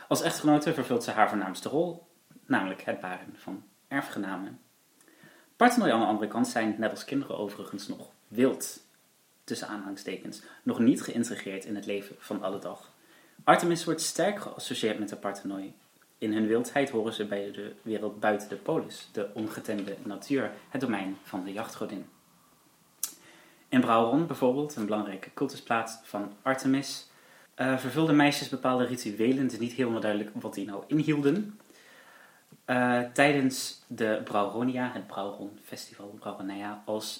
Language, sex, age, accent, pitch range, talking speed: Dutch, male, 30-49, Dutch, 105-145 Hz, 145 wpm